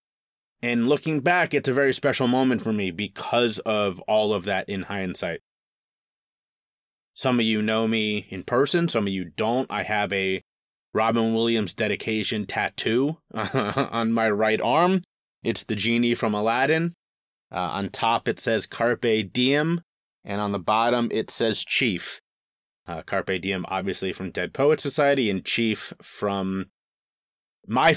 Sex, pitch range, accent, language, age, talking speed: male, 105-135 Hz, American, English, 30-49, 150 wpm